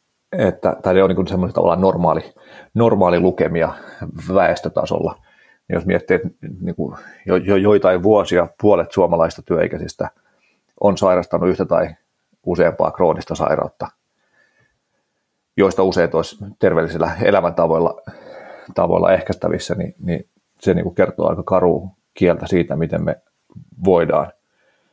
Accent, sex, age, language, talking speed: native, male, 30-49, Finnish, 115 wpm